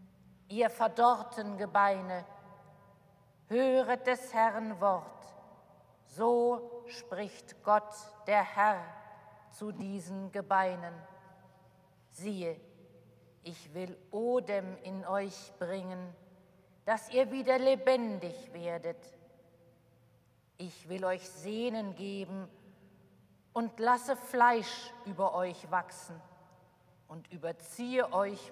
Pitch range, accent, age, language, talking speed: 180-225 Hz, German, 50-69, German, 85 wpm